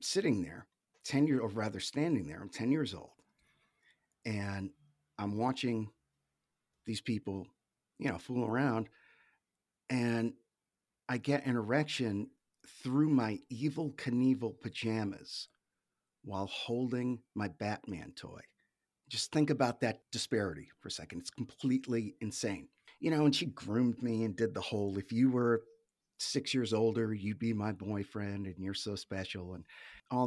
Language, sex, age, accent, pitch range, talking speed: English, male, 50-69, American, 95-125 Hz, 145 wpm